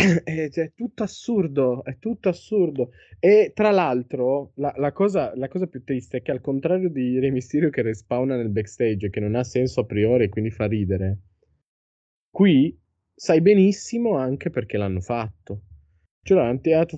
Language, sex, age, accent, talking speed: Italian, male, 20-39, native, 175 wpm